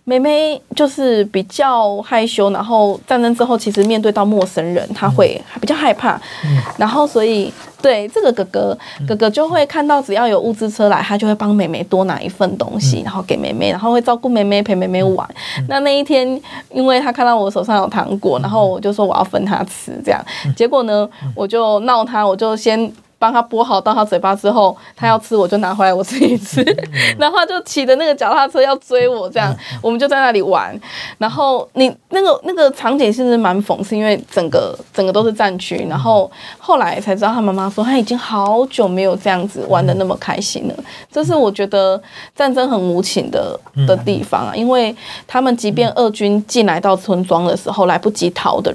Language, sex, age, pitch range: Chinese, female, 20-39, 195-250 Hz